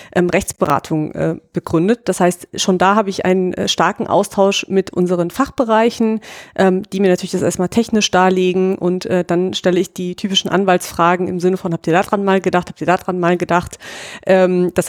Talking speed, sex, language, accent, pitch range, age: 185 wpm, female, German, German, 180-200 Hz, 30-49